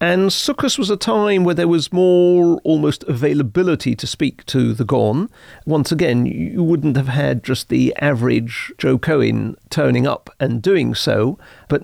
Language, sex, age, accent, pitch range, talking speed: English, male, 50-69, British, 125-175 Hz, 165 wpm